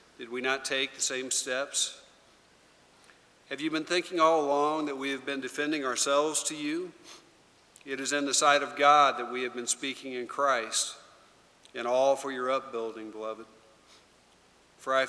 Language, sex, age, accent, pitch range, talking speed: English, male, 50-69, American, 120-140 Hz, 170 wpm